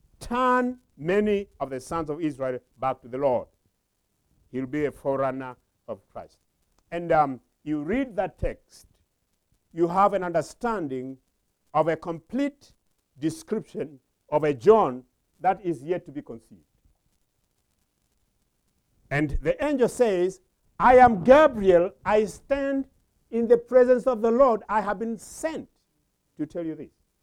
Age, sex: 50-69, male